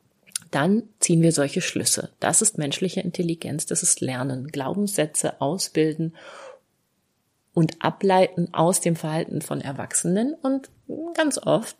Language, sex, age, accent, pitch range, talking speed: German, female, 30-49, German, 160-195 Hz, 120 wpm